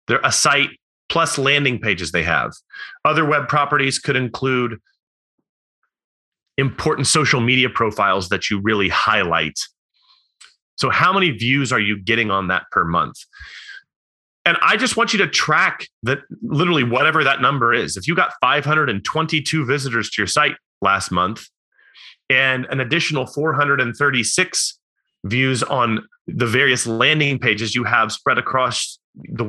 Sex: male